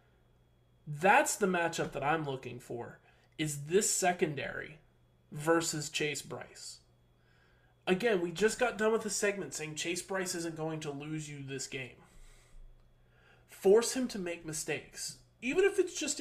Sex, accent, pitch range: male, American, 135-195 Hz